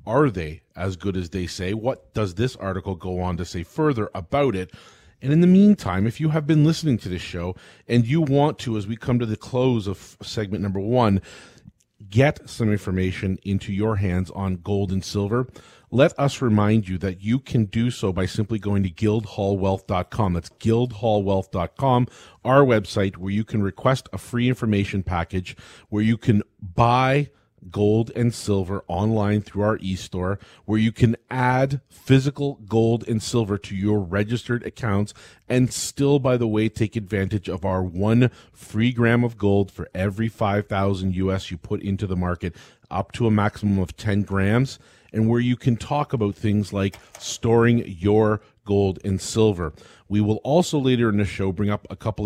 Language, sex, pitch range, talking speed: English, male, 95-120 Hz, 180 wpm